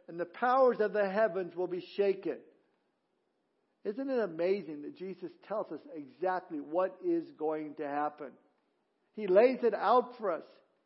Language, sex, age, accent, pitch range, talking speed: English, male, 50-69, American, 180-225 Hz, 155 wpm